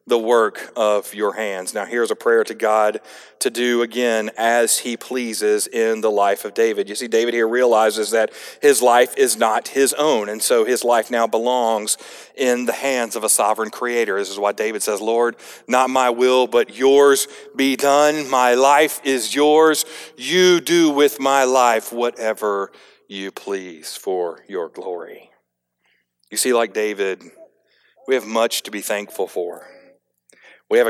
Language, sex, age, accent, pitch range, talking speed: English, male, 40-59, American, 115-145 Hz, 170 wpm